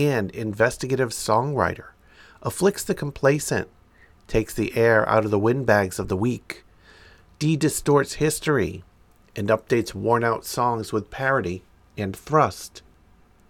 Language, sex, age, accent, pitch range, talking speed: English, male, 50-69, American, 95-125 Hz, 115 wpm